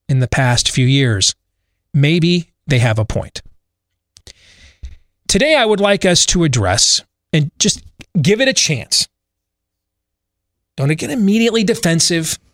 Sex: male